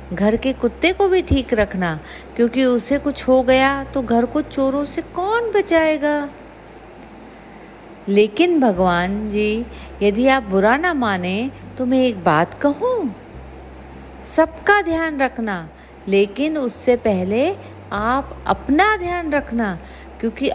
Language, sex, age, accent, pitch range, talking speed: Hindi, female, 50-69, native, 195-280 Hz, 125 wpm